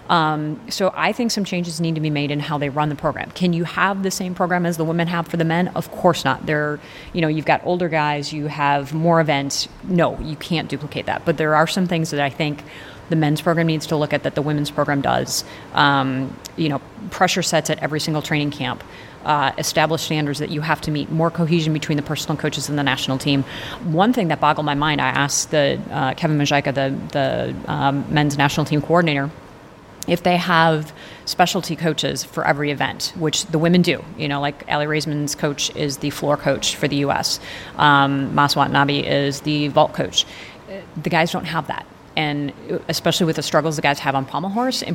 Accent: American